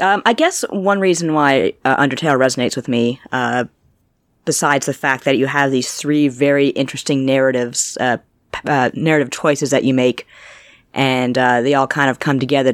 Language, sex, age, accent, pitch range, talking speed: English, female, 30-49, American, 125-150 Hz, 180 wpm